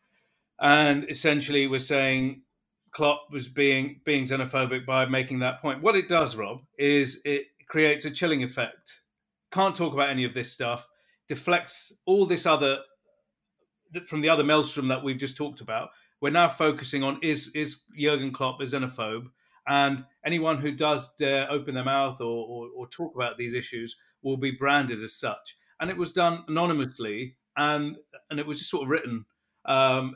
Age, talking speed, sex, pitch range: 40-59, 175 wpm, male, 130-155 Hz